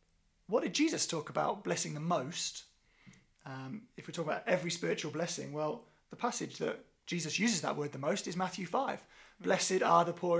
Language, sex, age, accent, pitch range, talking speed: English, male, 30-49, British, 155-190 Hz, 190 wpm